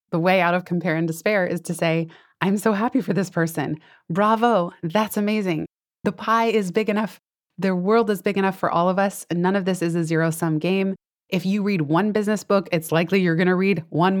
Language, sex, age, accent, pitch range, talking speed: English, female, 20-39, American, 165-205 Hz, 230 wpm